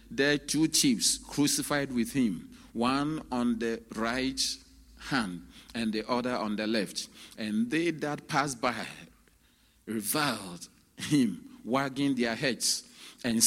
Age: 50-69